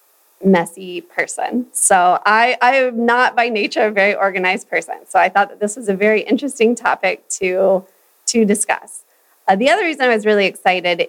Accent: American